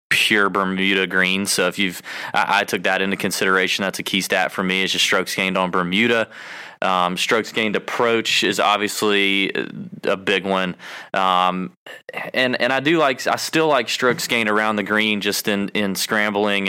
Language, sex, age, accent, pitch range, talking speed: English, male, 20-39, American, 95-110 Hz, 185 wpm